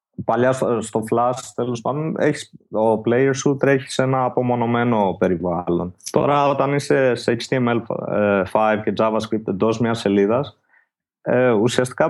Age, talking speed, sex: 20-39, 125 wpm, male